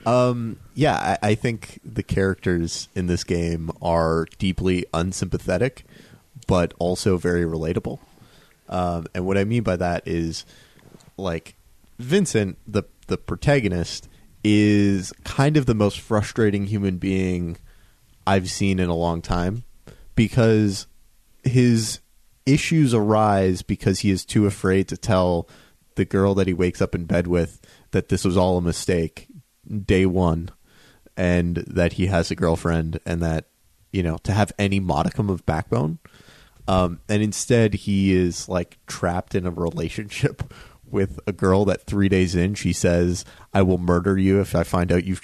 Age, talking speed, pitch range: 30-49, 155 wpm, 90-105 Hz